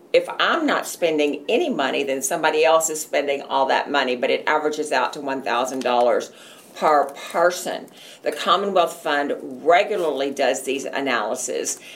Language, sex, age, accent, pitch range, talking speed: English, female, 50-69, American, 140-175 Hz, 145 wpm